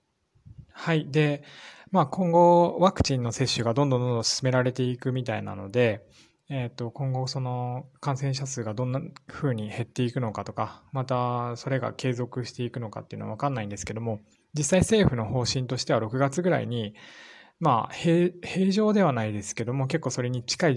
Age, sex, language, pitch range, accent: 20-39, male, Japanese, 110-135 Hz, native